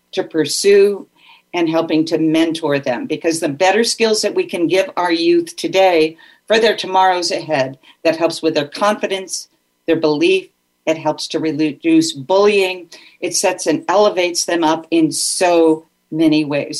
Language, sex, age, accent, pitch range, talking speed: English, female, 50-69, American, 160-205 Hz, 155 wpm